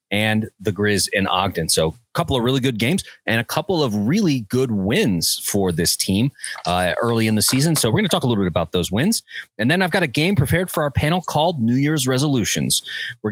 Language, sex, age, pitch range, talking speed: English, male, 30-49, 110-160 Hz, 240 wpm